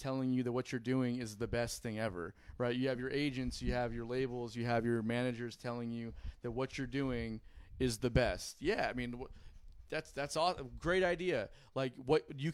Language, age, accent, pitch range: English, 20-39, American, 120-140 Hz